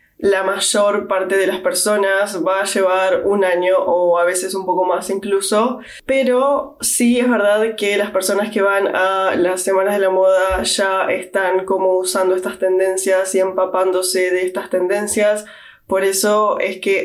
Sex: female